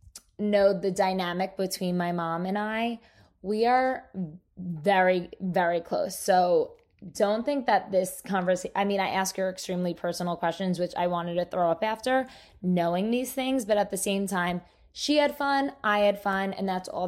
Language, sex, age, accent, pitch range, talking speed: English, female, 20-39, American, 180-235 Hz, 180 wpm